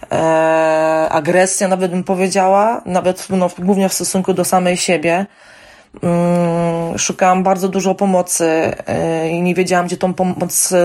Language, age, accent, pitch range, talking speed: Polish, 20-39, native, 170-195 Hz, 140 wpm